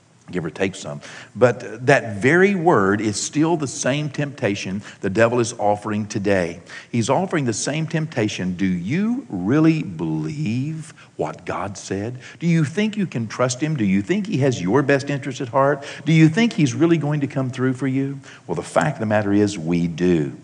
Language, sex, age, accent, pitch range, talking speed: English, male, 60-79, American, 120-160 Hz, 195 wpm